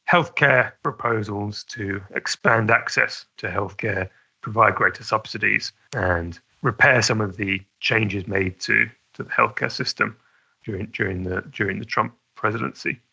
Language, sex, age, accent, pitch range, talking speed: English, male, 30-49, British, 100-130 Hz, 135 wpm